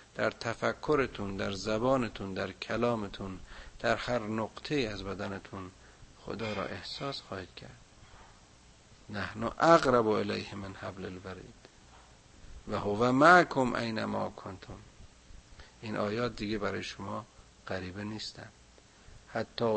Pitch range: 95-115 Hz